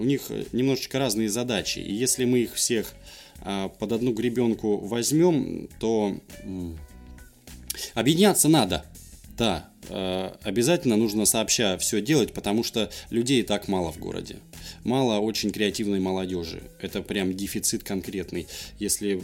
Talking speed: 130 wpm